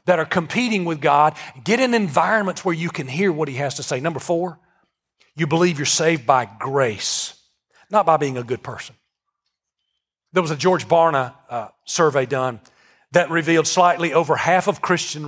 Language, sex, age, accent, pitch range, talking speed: English, male, 40-59, American, 145-190 Hz, 180 wpm